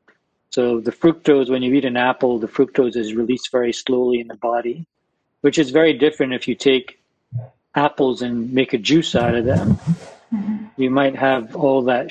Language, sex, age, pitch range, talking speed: English, male, 50-69, 125-150 Hz, 185 wpm